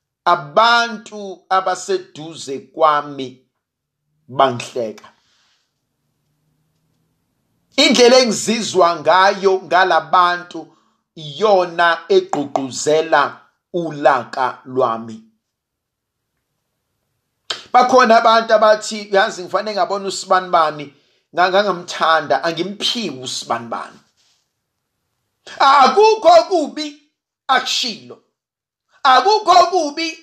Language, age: English, 50-69